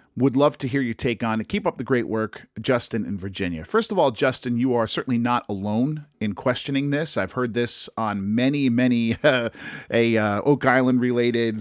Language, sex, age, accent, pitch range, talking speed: English, male, 40-59, American, 105-130 Hz, 195 wpm